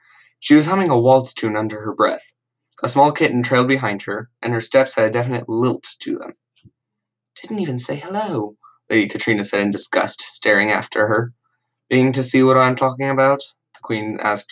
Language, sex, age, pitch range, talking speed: English, male, 10-29, 110-140 Hz, 190 wpm